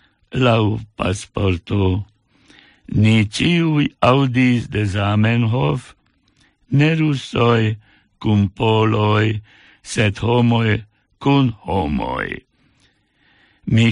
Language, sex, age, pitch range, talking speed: English, male, 60-79, 105-125 Hz, 65 wpm